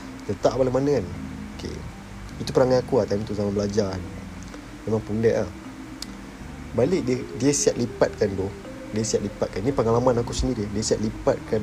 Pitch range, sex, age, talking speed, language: 100-130 Hz, male, 30-49, 160 wpm, Malay